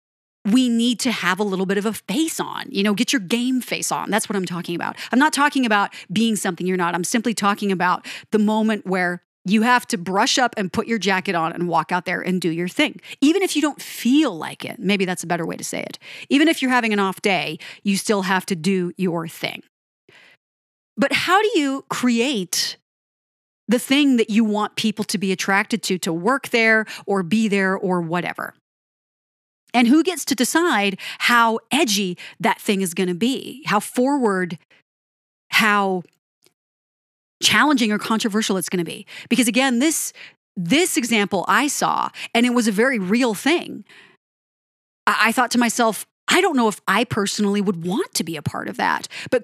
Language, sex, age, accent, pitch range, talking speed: English, female, 30-49, American, 190-250 Hz, 200 wpm